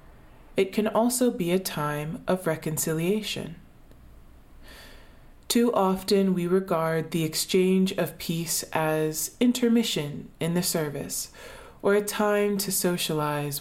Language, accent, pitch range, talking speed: English, American, 150-200 Hz, 115 wpm